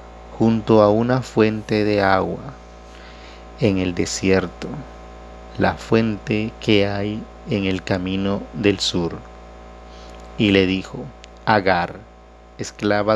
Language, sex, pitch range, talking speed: Spanish, male, 90-110 Hz, 105 wpm